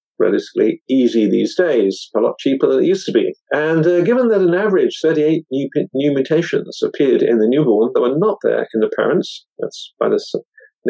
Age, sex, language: 50-69, male, English